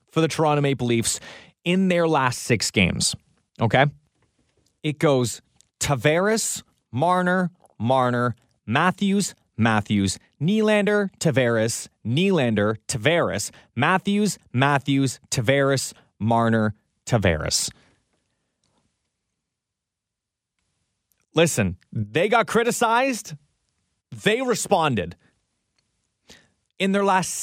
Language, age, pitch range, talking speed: English, 30-49, 120-185 Hz, 80 wpm